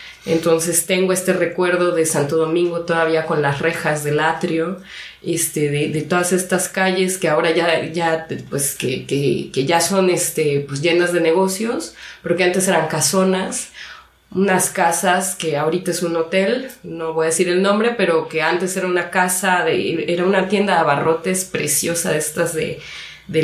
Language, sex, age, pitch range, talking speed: English, female, 20-39, 160-185 Hz, 175 wpm